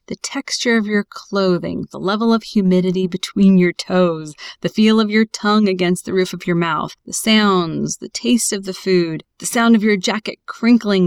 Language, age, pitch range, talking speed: English, 30-49, 190-245 Hz, 195 wpm